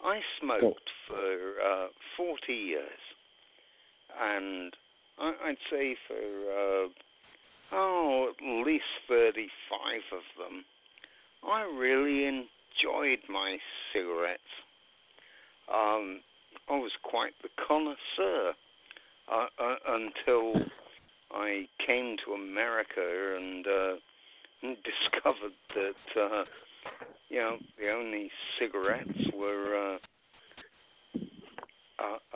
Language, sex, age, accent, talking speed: English, male, 60-79, British, 90 wpm